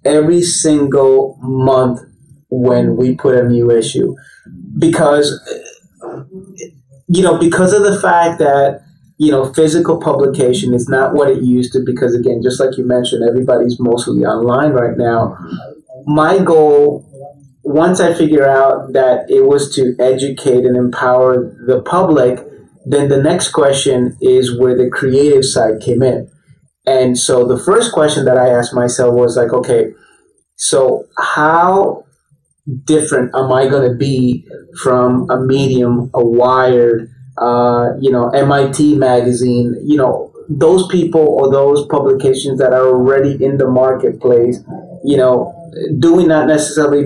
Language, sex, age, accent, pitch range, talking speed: English, male, 30-49, American, 125-150 Hz, 145 wpm